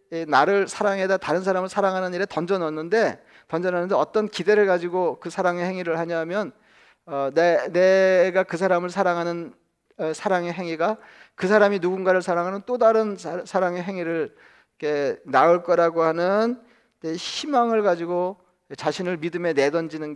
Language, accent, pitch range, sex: Korean, native, 155-195 Hz, male